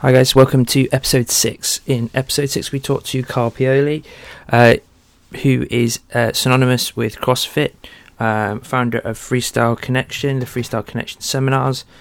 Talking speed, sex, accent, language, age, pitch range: 150 wpm, male, British, English, 20-39, 110-130 Hz